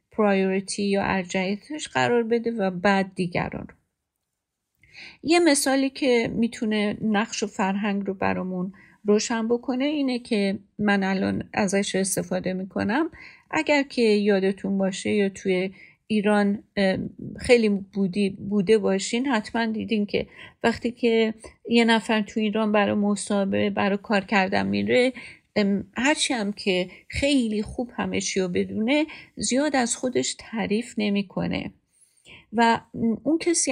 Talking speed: 125 wpm